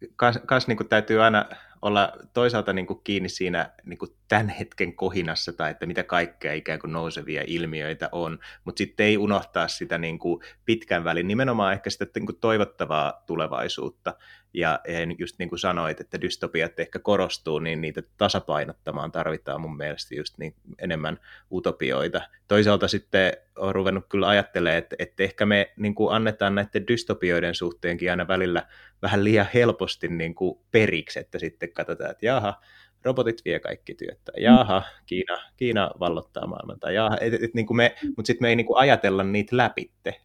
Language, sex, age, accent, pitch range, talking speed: Finnish, male, 30-49, native, 85-105 Hz, 165 wpm